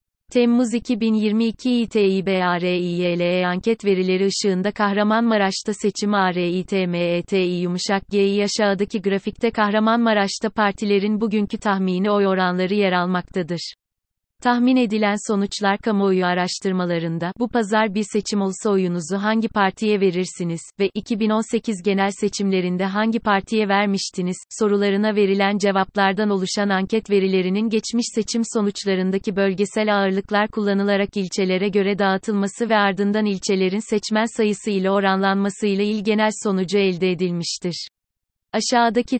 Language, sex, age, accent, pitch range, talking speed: Turkish, female, 30-49, native, 190-215 Hz, 110 wpm